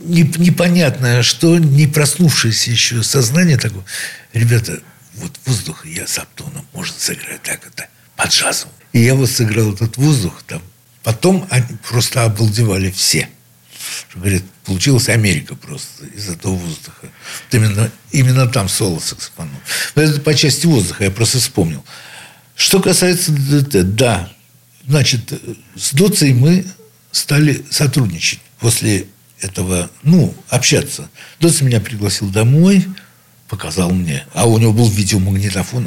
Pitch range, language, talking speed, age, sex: 100-140 Hz, Russian, 125 wpm, 60-79, male